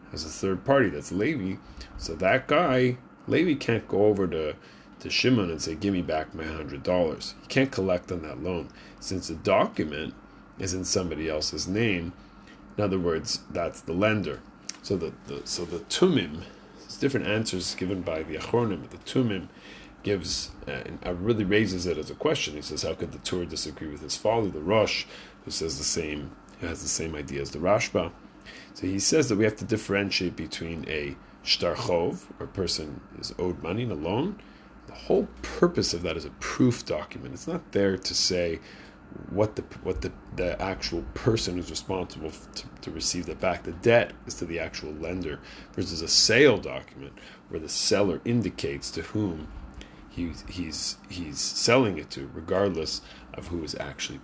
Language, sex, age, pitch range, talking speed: English, male, 30-49, 80-100 Hz, 185 wpm